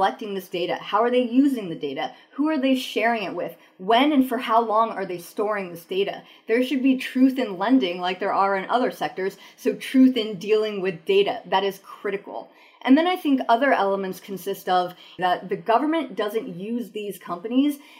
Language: English